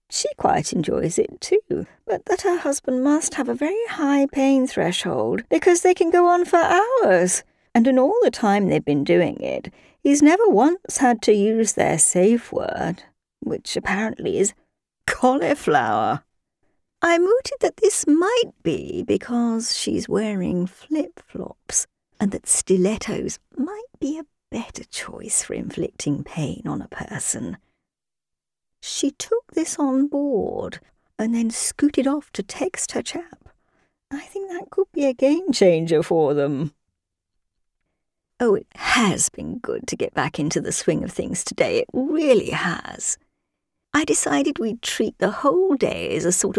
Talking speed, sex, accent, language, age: 150 wpm, female, British, English, 50-69